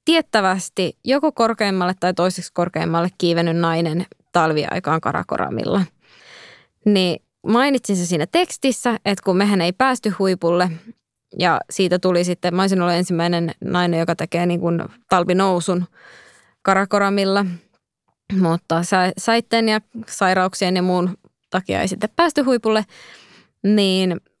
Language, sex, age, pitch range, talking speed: Finnish, female, 20-39, 180-230 Hz, 115 wpm